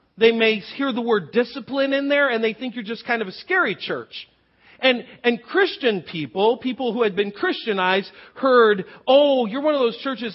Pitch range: 185-250 Hz